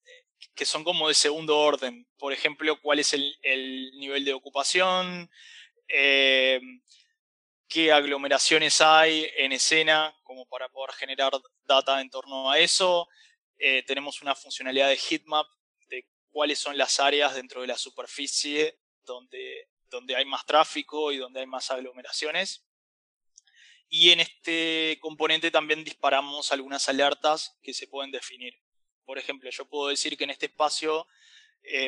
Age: 20-39